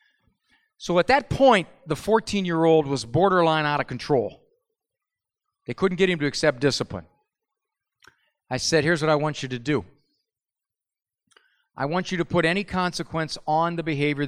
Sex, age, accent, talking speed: male, 40-59, American, 155 wpm